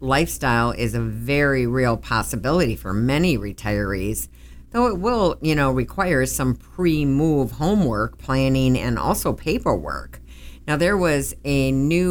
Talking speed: 135 wpm